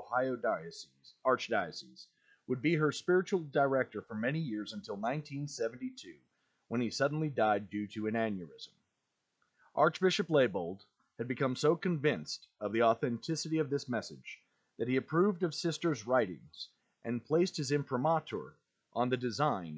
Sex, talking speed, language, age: male, 140 wpm, English, 40-59